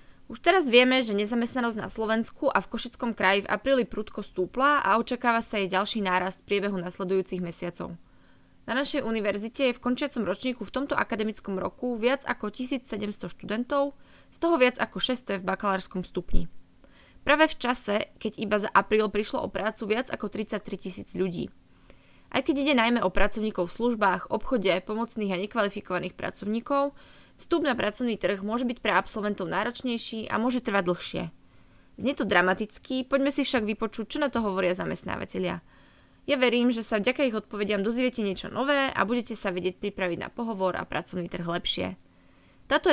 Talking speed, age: 170 wpm, 20-39